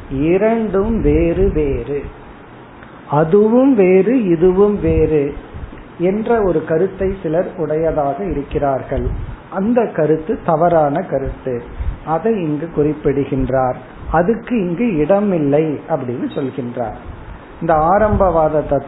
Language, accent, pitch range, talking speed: Tamil, native, 145-195 Hz, 65 wpm